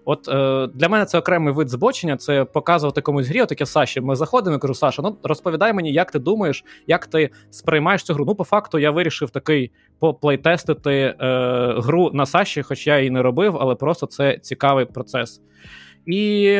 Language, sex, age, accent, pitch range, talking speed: Ukrainian, male, 20-39, native, 140-180 Hz, 190 wpm